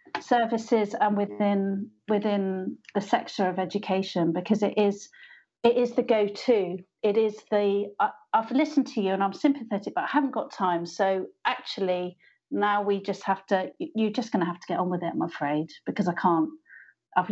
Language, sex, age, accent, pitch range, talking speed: English, female, 40-59, British, 185-230 Hz, 190 wpm